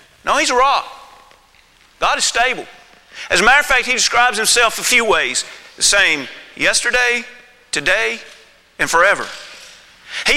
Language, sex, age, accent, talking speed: English, male, 40-59, American, 145 wpm